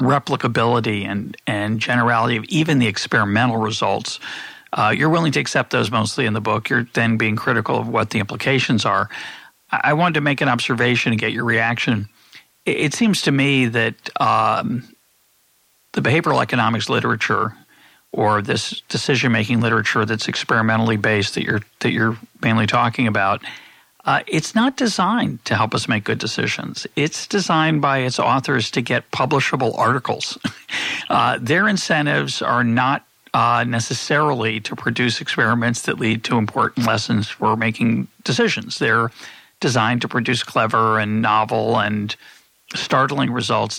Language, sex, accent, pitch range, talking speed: English, male, American, 110-135 Hz, 155 wpm